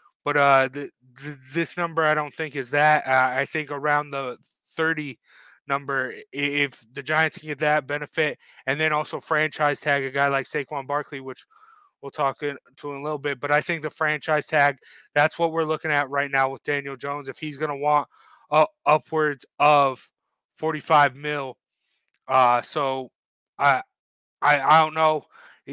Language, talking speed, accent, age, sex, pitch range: English, 180 wpm, American, 20-39, male, 145-170 Hz